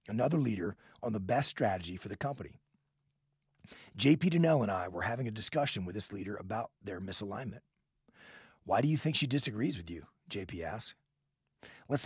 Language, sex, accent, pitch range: English, male, American, 105-145 Hz